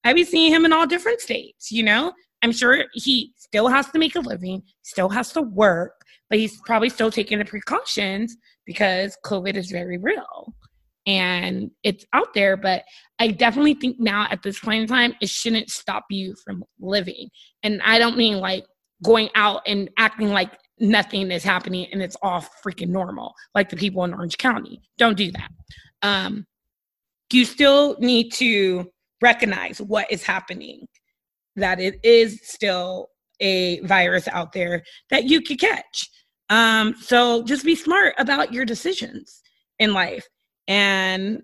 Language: English